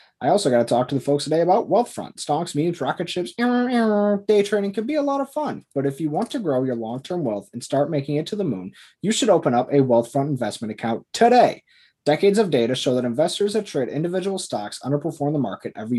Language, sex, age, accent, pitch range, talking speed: English, male, 20-39, American, 120-170 Hz, 240 wpm